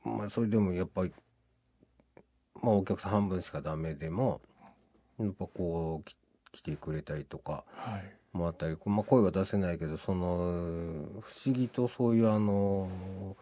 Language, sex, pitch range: Japanese, male, 80-115 Hz